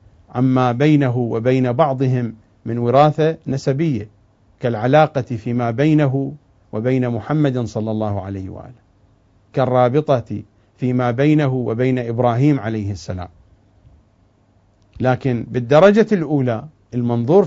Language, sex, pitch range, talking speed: English, male, 100-130 Hz, 95 wpm